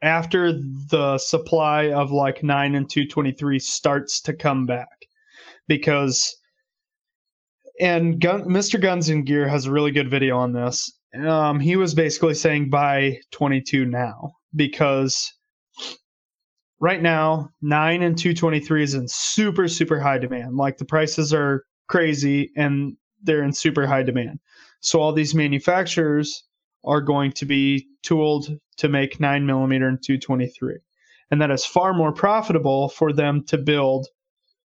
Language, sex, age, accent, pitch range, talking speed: English, male, 20-39, American, 140-165 Hz, 140 wpm